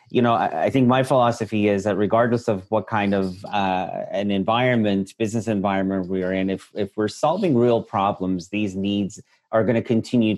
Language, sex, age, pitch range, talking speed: English, male, 30-49, 95-110 Hz, 185 wpm